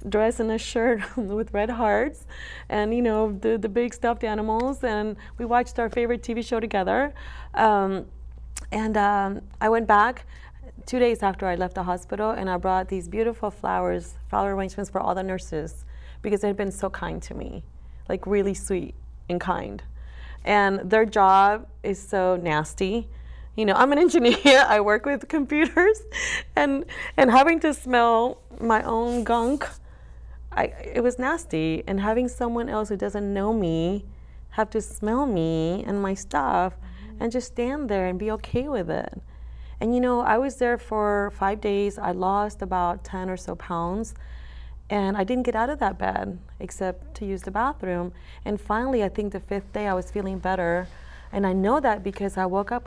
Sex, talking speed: female, 180 wpm